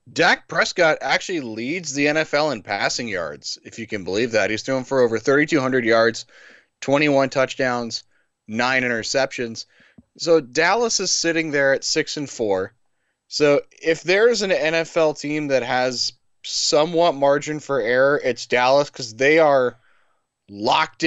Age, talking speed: 20-39, 145 wpm